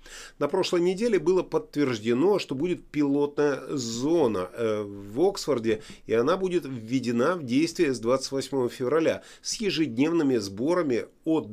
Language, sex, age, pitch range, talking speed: Russian, male, 30-49, 120-160 Hz, 125 wpm